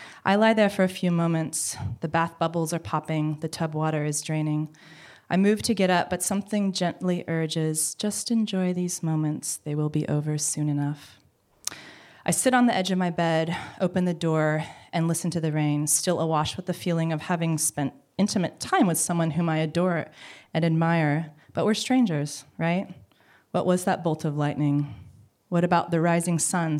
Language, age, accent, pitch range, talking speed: English, 20-39, American, 150-180 Hz, 190 wpm